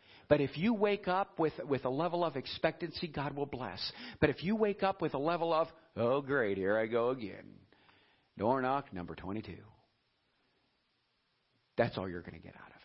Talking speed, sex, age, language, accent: 190 wpm, male, 50-69, English, American